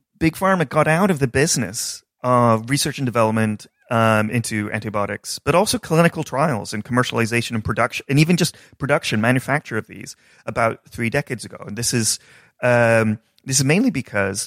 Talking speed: 170 wpm